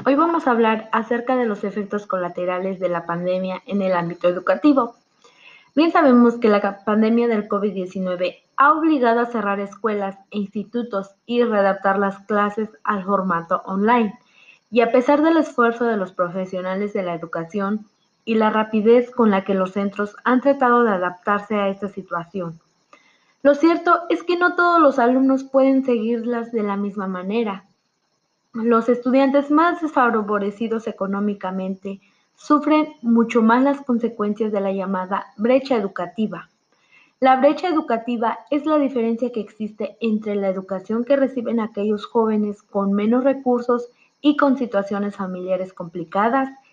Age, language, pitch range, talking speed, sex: 20-39, Spanish, 195-245 Hz, 150 wpm, female